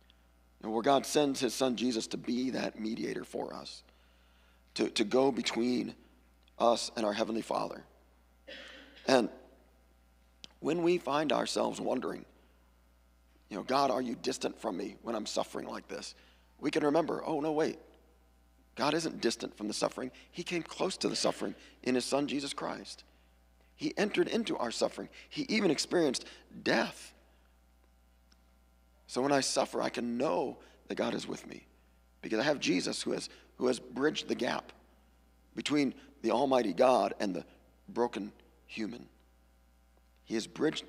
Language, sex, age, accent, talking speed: English, male, 40-59, American, 155 wpm